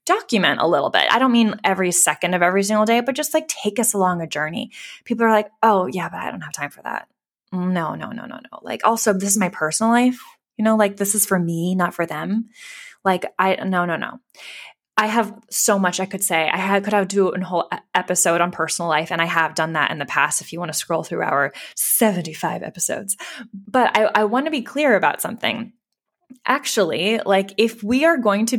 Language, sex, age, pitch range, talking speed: English, female, 20-39, 180-240 Hz, 235 wpm